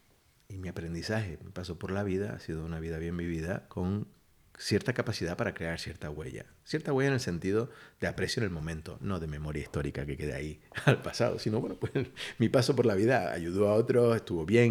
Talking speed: 215 wpm